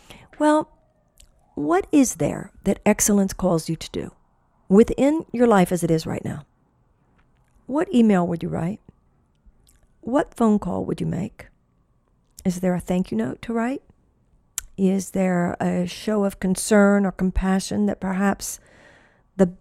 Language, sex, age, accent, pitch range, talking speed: English, female, 50-69, American, 175-210 Hz, 145 wpm